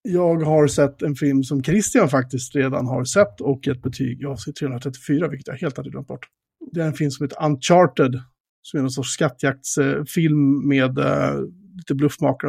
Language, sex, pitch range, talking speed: Swedish, male, 135-165 Hz, 180 wpm